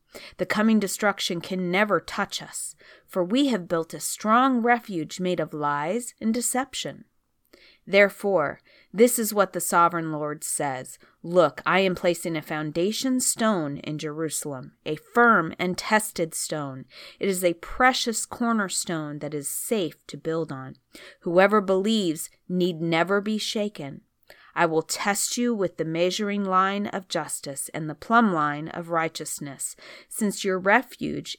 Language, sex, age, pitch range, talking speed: English, female, 30-49, 160-210 Hz, 145 wpm